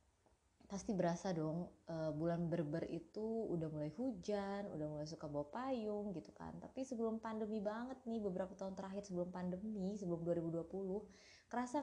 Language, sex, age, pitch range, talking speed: Indonesian, female, 20-39, 155-200 Hz, 140 wpm